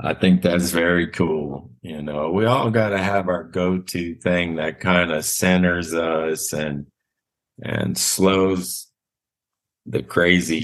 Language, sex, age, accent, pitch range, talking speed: English, male, 50-69, American, 75-90 Hz, 140 wpm